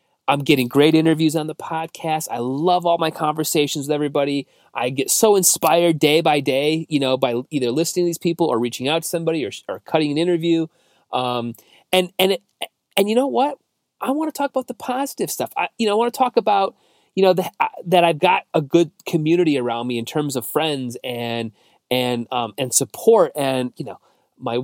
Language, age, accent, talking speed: English, 30-49, American, 215 wpm